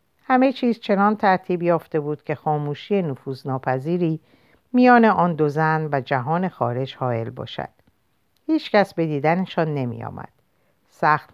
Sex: female